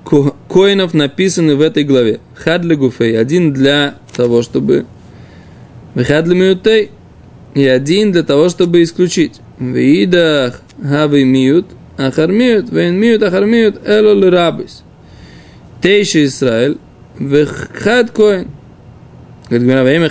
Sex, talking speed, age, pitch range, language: male, 70 wpm, 20-39, 140-195 Hz, Russian